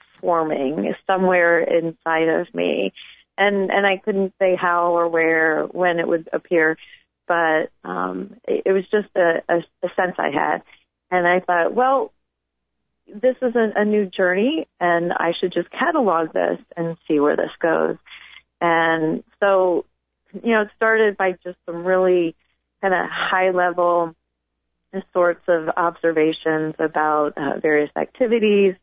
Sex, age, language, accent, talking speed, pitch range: female, 30-49, English, American, 145 wpm, 160-200 Hz